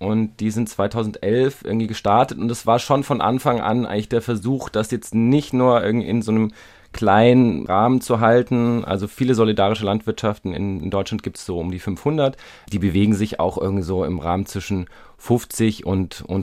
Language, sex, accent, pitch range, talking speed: German, male, German, 95-115 Hz, 195 wpm